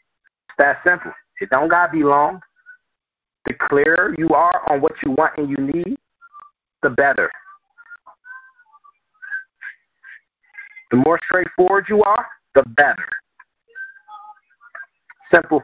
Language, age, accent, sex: English, 30-49, American, male